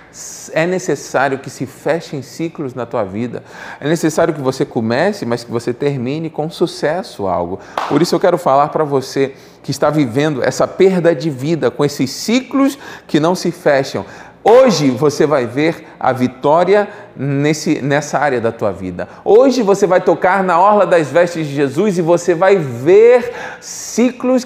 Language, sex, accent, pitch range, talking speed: Portuguese, male, Brazilian, 120-180 Hz, 165 wpm